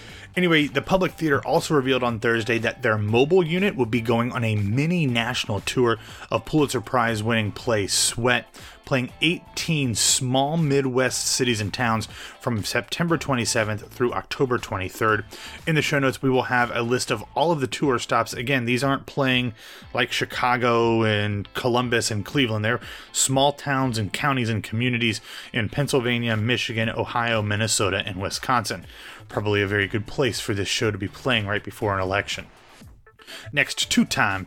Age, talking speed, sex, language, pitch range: 30-49, 165 wpm, male, English, 110-135 Hz